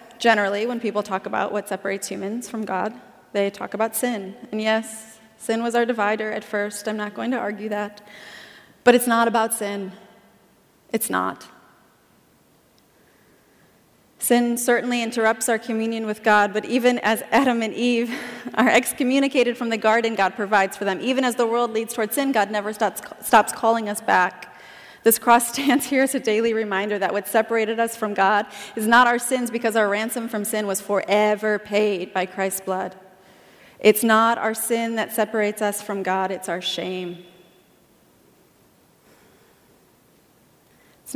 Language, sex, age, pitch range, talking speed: English, female, 30-49, 200-235 Hz, 165 wpm